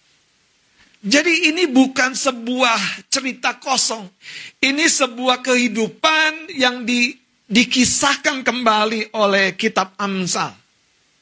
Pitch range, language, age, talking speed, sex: 210-275 Hz, Indonesian, 50-69, 85 wpm, male